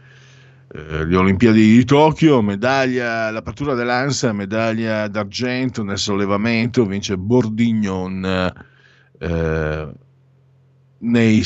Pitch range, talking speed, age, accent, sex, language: 95-135 Hz, 80 wpm, 50-69, native, male, Italian